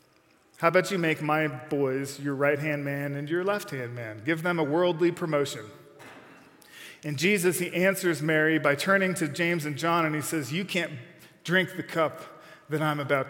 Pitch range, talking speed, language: 150-180 Hz, 180 wpm, English